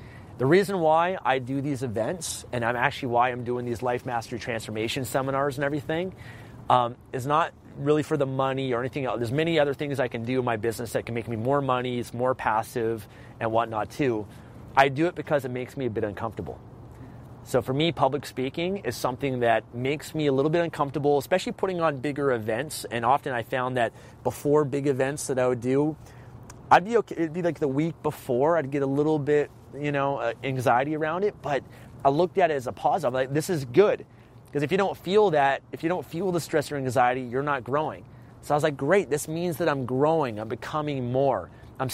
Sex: male